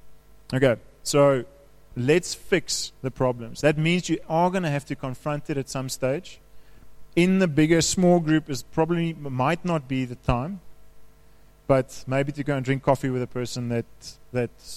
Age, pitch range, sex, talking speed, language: 30-49, 125-150 Hz, male, 170 wpm, English